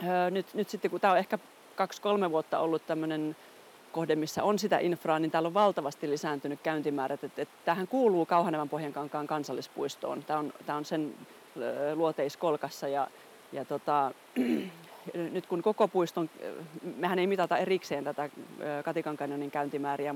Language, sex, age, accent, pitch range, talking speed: Finnish, female, 30-49, native, 145-170 Hz, 140 wpm